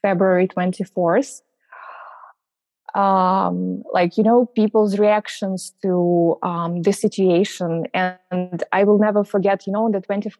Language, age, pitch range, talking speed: English, 20-39, 185-225 Hz, 125 wpm